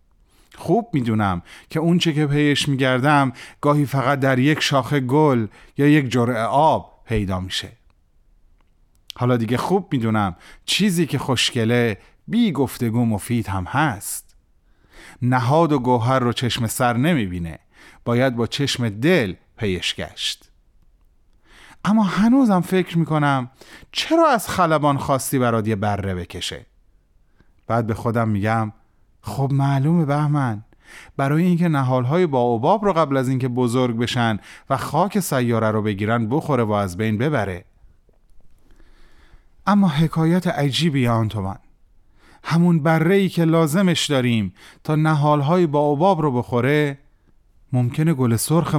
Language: Persian